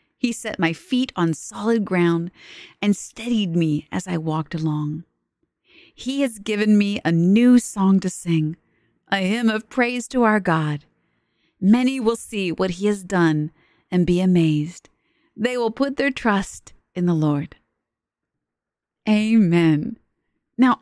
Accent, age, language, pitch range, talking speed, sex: American, 30-49, English, 165-230 Hz, 145 wpm, female